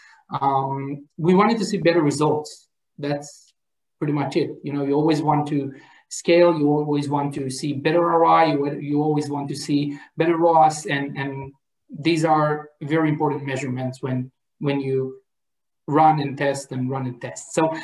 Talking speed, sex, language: 170 wpm, male, English